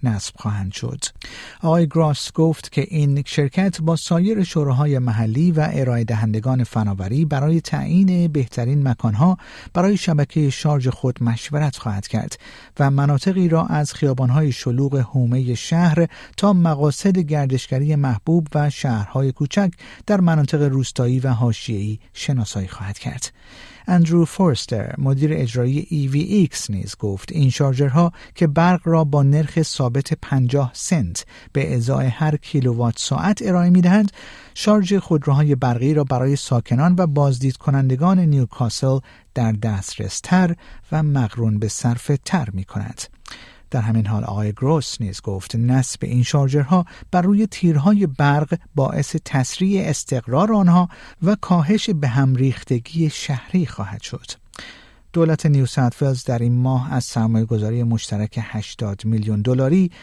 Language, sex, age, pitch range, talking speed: Persian, male, 50-69, 120-160 Hz, 130 wpm